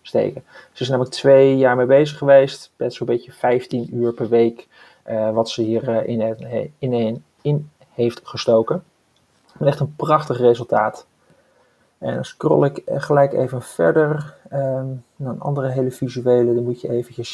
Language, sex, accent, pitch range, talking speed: Dutch, male, Dutch, 115-130 Hz, 170 wpm